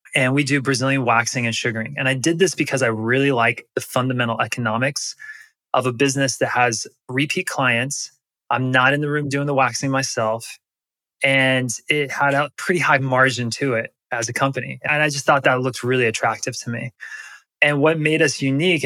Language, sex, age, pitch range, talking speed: English, male, 20-39, 125-145 Hz, 195 wpm